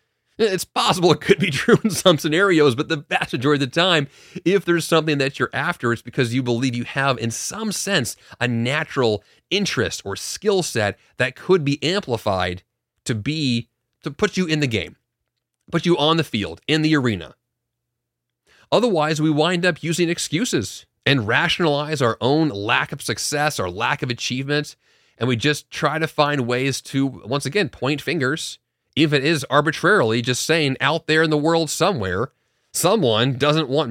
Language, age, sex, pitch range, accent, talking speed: English, 30-49, male, 115-160 Hz, American, 180 wpm